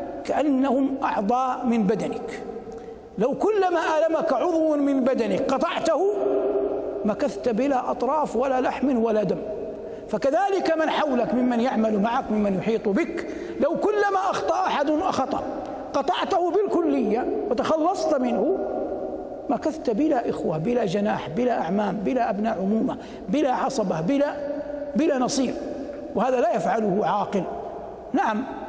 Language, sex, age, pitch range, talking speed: Arabic, male, 60-79, 200-275 Hz, 115 wpm